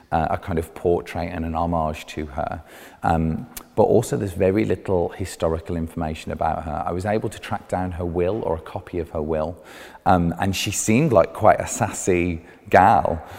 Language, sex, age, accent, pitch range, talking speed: English, male, 30-49, British, 85-105 Hz, 195 wpm